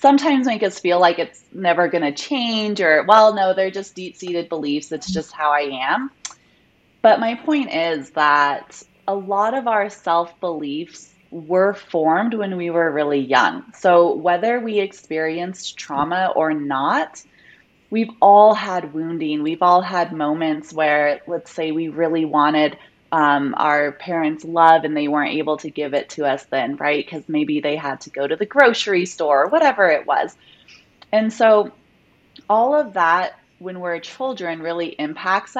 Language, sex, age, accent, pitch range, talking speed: English, female, 20-39, American, 155-200 Hz, 165 wpm